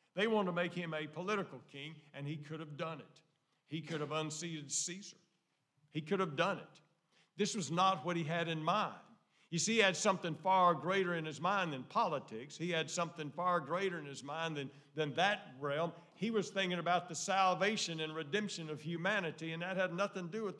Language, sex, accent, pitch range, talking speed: English, male, American, 150-195 Hz, 215 wpm